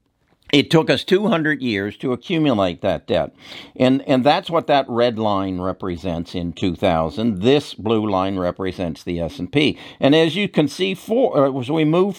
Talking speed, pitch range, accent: 165 wpm, 105-145 Hz, American